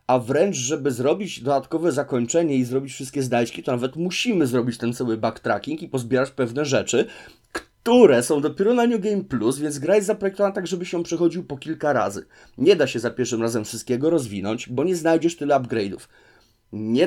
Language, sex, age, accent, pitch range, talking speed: Polish, male, 30-49, native, 125-170 Hz, 185 wpm